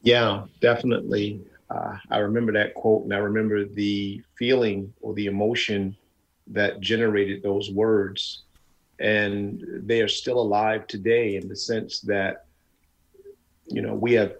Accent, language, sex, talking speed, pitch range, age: American, English, male, 140 wpm, 95-110 Hz, 40-59